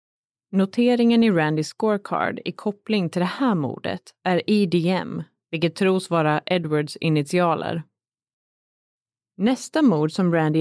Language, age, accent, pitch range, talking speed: Swedish, 30-49, native, 160-210 Hz, 120 wpm